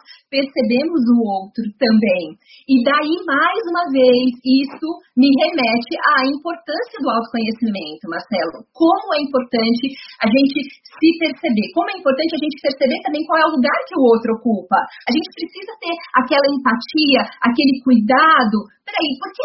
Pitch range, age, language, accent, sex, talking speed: 240-300 Hz, 40-59, Portuguese, Brazilian, female, 155 wpm